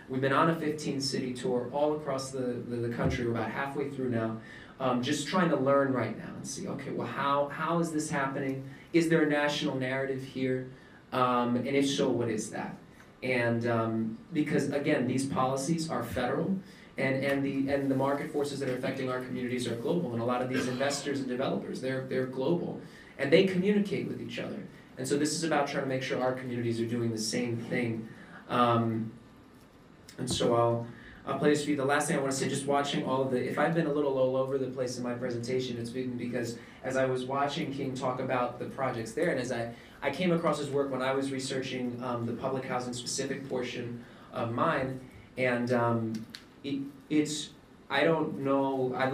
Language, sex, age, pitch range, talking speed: English, male, 30-49, 125-145 Hz, 215 wpm